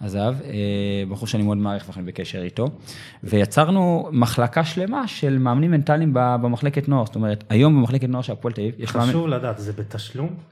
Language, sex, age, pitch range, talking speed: Hebrew, male, 20-39, 110-155 Hz, 175 wpm